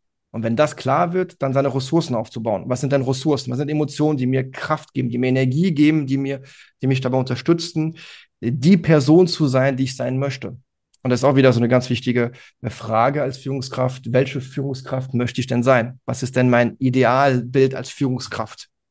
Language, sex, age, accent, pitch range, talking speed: German, male, 30-49, German, 125-150 Hz, 200 wpm